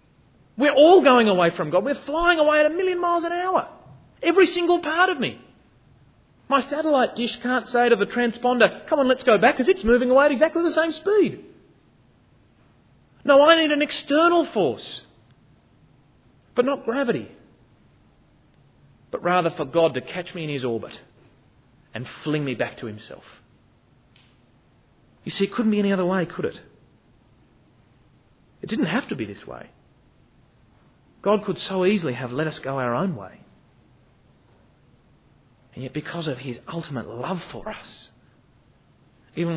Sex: male